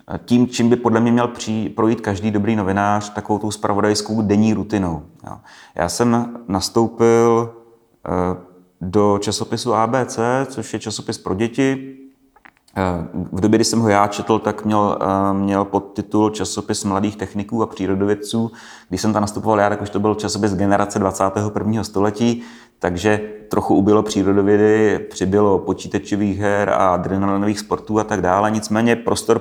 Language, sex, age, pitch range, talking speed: Czech, male, 30-49, 100-110 Hz, 140 wpm